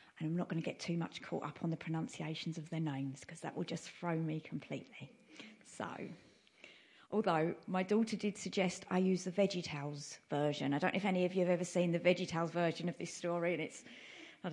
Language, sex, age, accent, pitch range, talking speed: English, female, 30-49, British, 165-190 Hz, 220 wpm